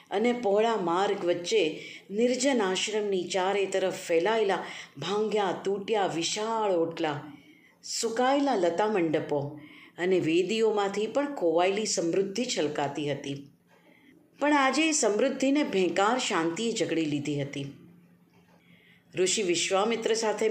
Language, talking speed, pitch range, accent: Gujarati, 95 wpm, 165-245 Hz, native